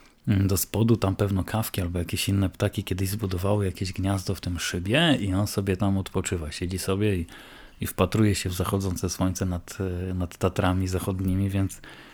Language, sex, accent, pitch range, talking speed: Polish, male, native, 95-105 Hz, 175 wpm